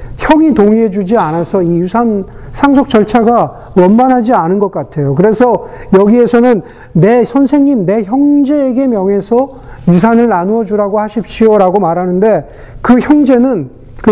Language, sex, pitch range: Korean, male, 160-235 Hz